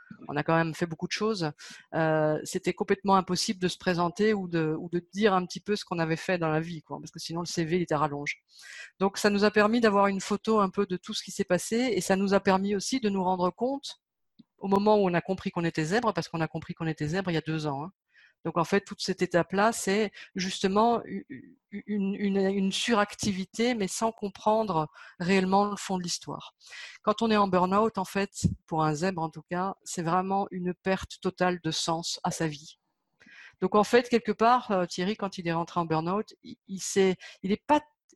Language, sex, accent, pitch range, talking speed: French, female, French, 170-210 Hz, 235 wpm